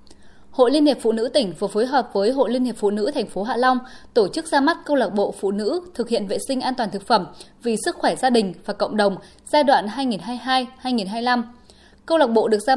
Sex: female